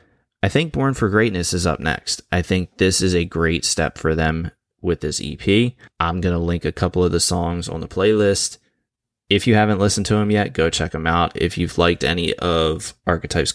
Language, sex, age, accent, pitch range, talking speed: English, male, 20-39, American, 85-105 Hz, 215 wpm